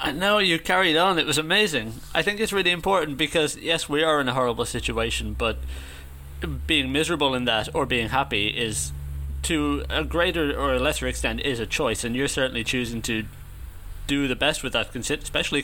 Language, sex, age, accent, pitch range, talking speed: English, male, 30-49, British, 110-140 Hz, 190 wpm